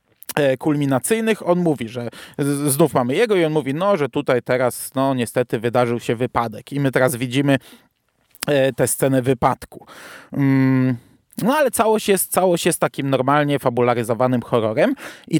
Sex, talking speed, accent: male, 155 wpm, native